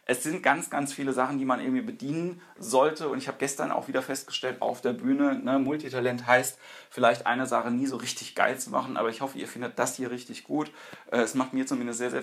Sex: male